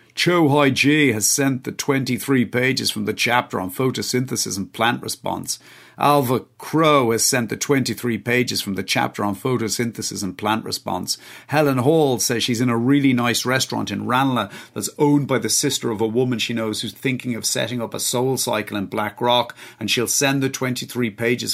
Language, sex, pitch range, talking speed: English, male, 115-135 Hz, 190 wpm